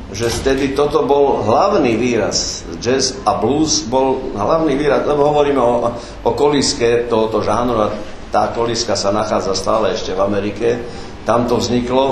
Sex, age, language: male, 50-69, Slovak